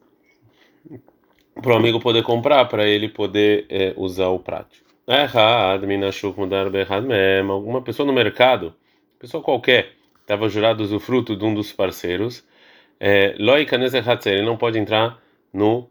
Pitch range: 100-120 Hz